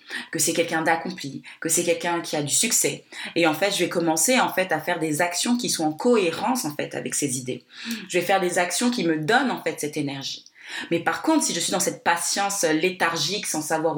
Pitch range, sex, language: 150-175 Hz, female, French